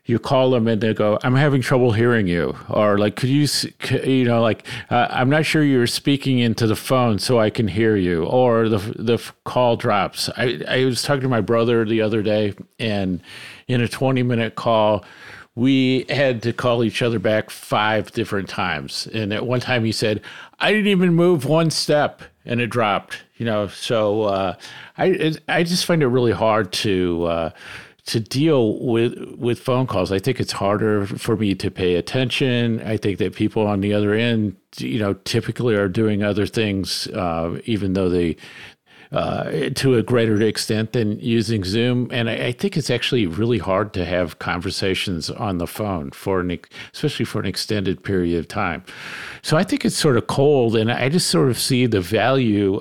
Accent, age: American, 50-69